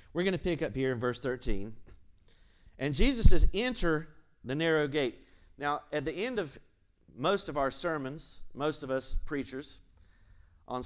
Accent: American